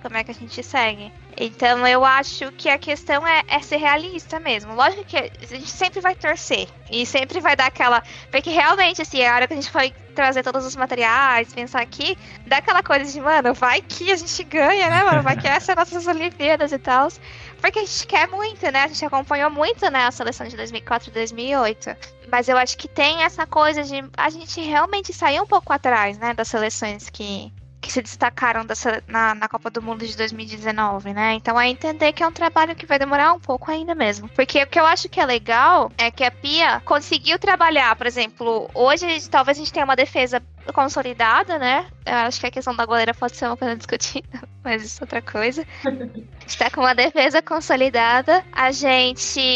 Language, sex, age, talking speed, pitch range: Portuguese, female, 10-29, 215 wpm, 245-315 Hz